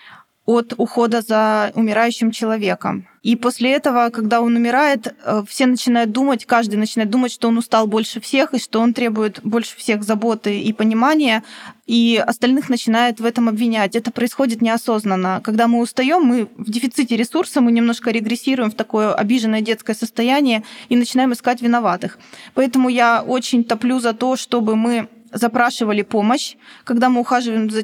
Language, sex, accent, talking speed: Russian, female, native, 155 wpm